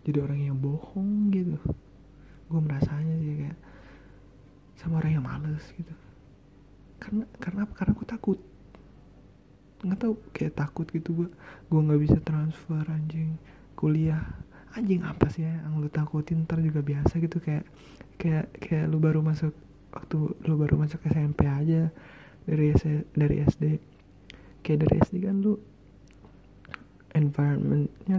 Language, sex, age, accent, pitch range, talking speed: Indonesian, male, 20-39, native, 145-165 Hz, 135 wpm